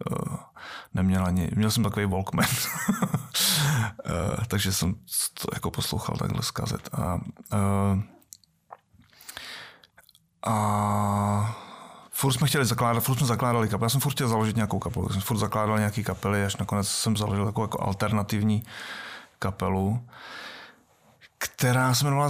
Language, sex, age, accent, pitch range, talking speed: Czech, male, 30-49, native, 100-115 Hz, 135 wpm